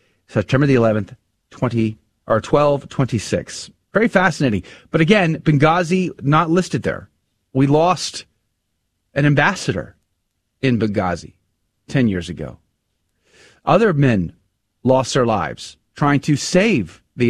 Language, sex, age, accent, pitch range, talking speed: English, male, 30-49, American, 110-155 Hz, 115 wpm